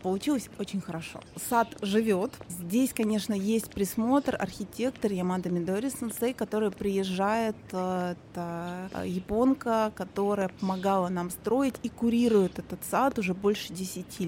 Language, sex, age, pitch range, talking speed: Russian, female, 20-39, 185-230 Hz, 110 wpm